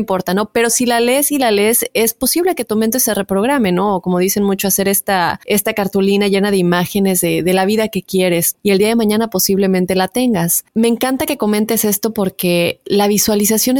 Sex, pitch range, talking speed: female, 190-245 Hz, 215 wpm